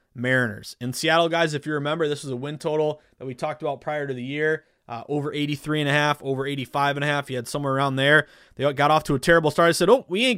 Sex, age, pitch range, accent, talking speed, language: male, 20-39, 135-175 Hz, American, 280 wpm, English